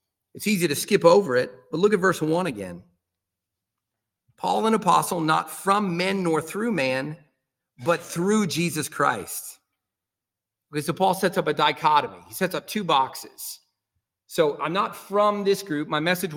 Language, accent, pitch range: English, American, 125-180 Hz